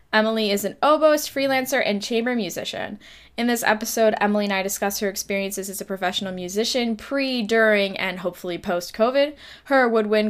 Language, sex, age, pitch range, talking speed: English, female, 10-29, 195-240 Hz, 165 wpm